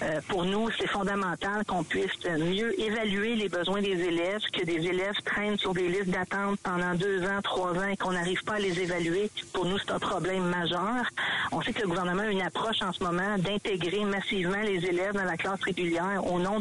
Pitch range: 185-210 Hz